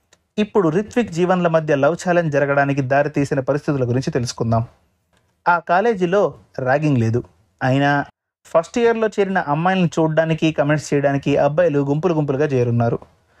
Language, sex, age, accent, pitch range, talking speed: Telugu, male, 30-49, native, 130-170 Hz, 120 wpm